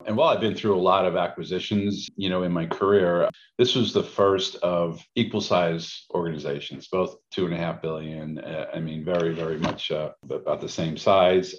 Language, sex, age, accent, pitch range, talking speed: English, male, 50-69, American, 80-95 Hz, 200 wpm